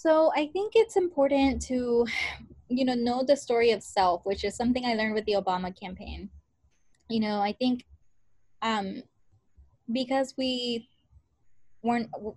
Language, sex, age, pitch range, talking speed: English, female, 20-39, 200-240 Hz, 145 wpm